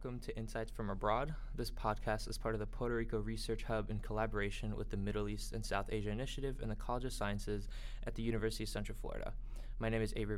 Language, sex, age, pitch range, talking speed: English, male, 20-39, 110-125 Hz, 230 wpm